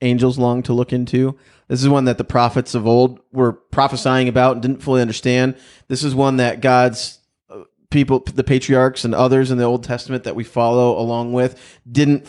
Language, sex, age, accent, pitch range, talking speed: English, male, 30-49, American, 115-135 Hz, 195 wpm